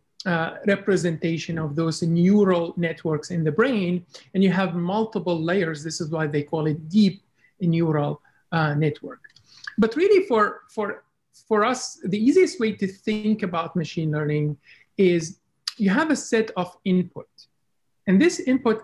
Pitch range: 165-205 Hz